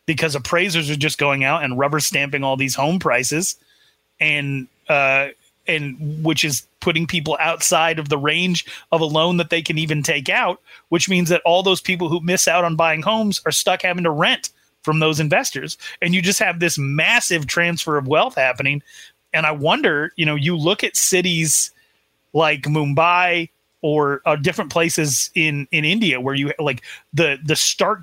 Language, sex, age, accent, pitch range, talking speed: English, male, 30-49, American, 140-170 Hz, 185 wpm